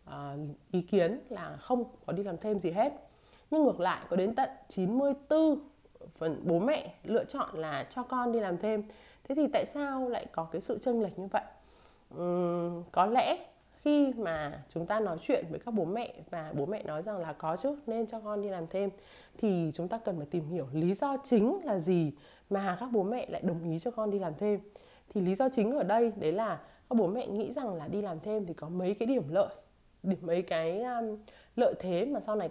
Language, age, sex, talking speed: Vietnamese, 20-39, female, 225 wpm